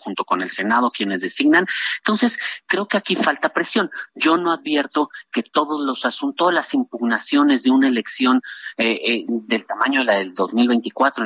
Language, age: Spanish, 40-59